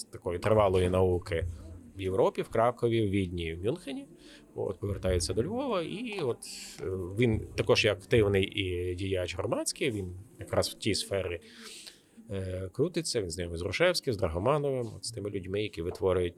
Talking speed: 160 wpm